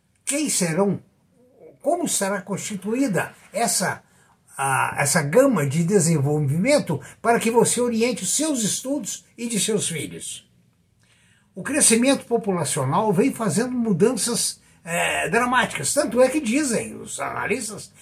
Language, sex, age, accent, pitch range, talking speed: Portuguese, male, 60-79, Brazilian, 165-240 Hz, 115 wpm